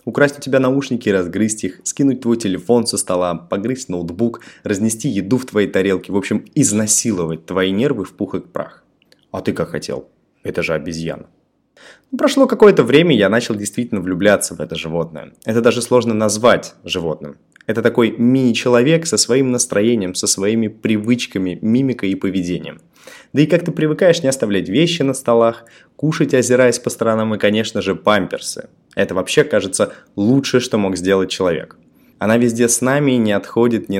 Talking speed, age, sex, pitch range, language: 170 wpm, 20-39, male, 95-130 Hz, Russian